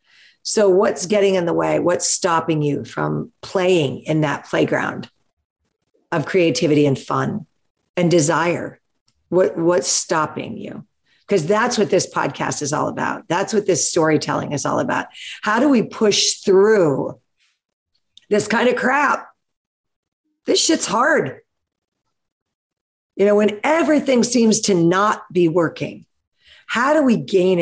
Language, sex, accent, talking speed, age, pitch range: English, female, American, 135 wpm, 50-69, 165-220 Hz